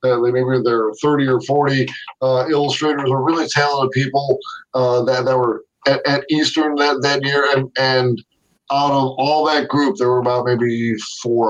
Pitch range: 125-155 Hz